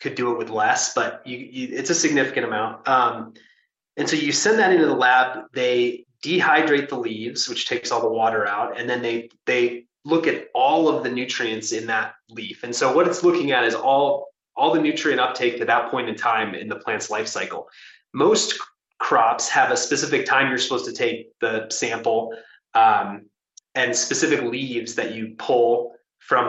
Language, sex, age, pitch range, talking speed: English, male, 30-49, 120-150 Hz, 190 wpm